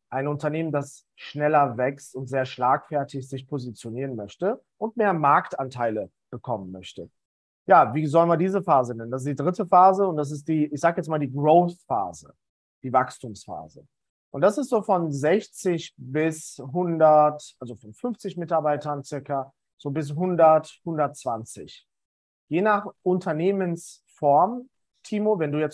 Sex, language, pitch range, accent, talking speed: male, German, 135-180 Hz, German, 150 wpm